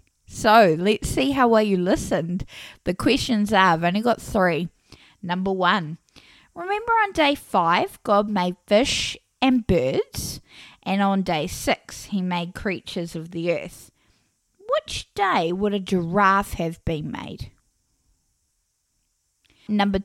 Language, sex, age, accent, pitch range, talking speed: English, female, 10-29, Australian, 175-235 Hz, 130 wpm